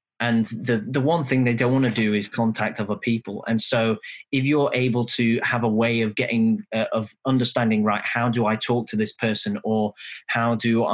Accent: British